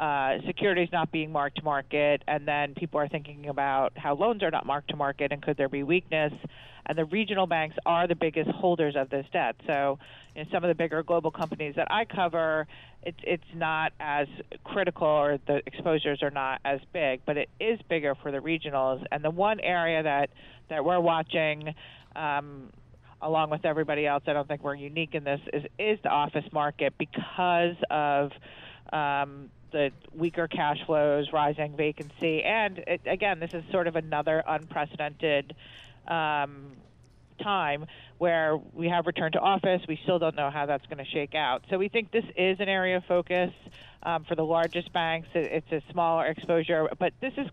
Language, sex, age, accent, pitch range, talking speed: English, female, 40-59, American, 145-170 Hz, 190 wpm